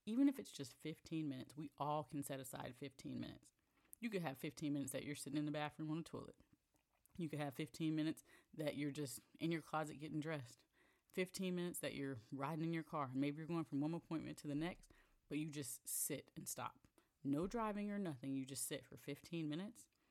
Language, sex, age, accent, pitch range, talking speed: English, female, 30-49, American, 140-170 Hz, 220 wpm